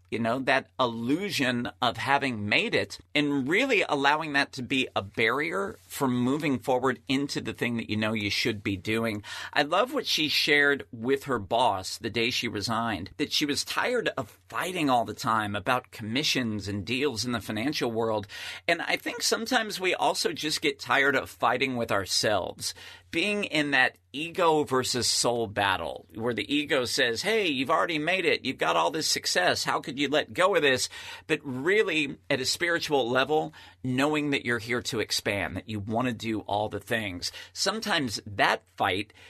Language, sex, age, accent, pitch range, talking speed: English, male, 40-59, American, 110-145 Hz, 185 wpm